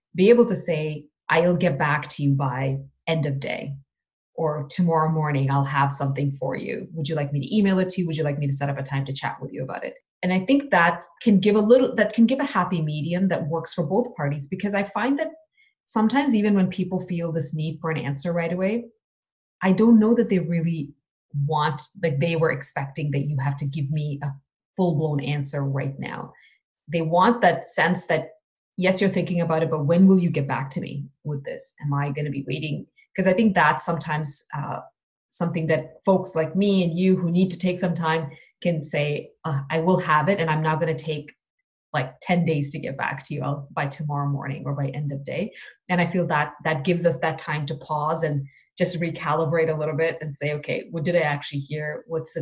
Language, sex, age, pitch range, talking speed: English, female, 20-39, 145-180 Hz, 230 wpm